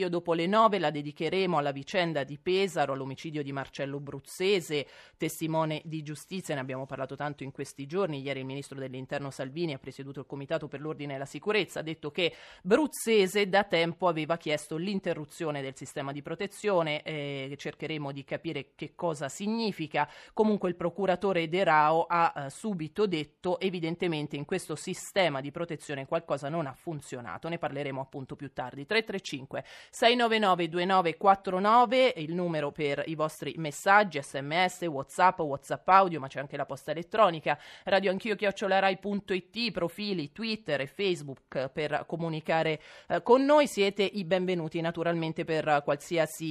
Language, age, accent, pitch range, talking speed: Italian, 30-49, native, 145-185 Hz, 150 wpm